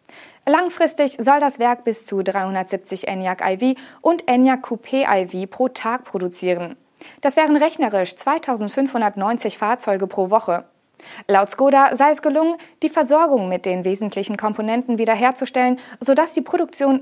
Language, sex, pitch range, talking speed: German, female, 195-275 Hz, 125 wpm